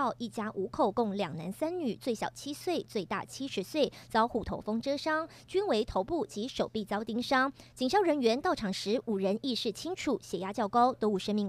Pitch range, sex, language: 210-280 Hz, male, Chinese